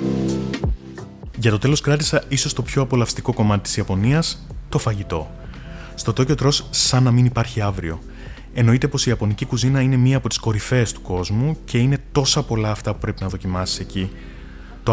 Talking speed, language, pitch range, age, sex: 175 wpm, Greek, 105-135 Hz, 20-39, male